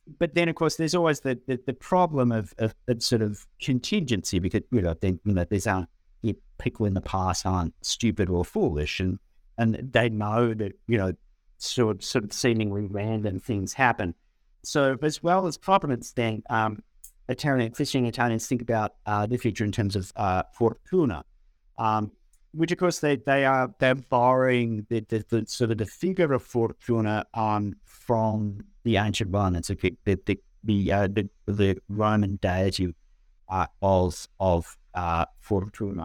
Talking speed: 175 wpm